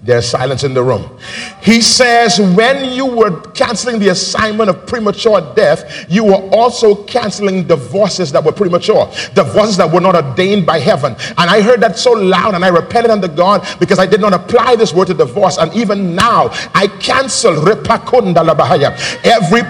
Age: 50-69